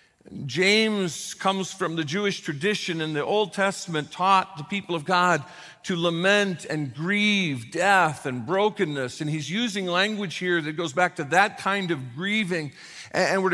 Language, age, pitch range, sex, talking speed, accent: English, 50-69, 155-195 Hz, male, 165 wpm, American